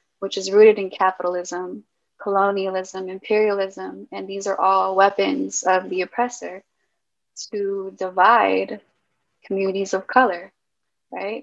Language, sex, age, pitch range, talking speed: English, female, 20-39, 185-220 Hz, 110 wpm